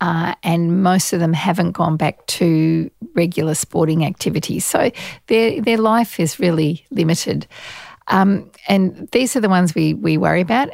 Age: 50-69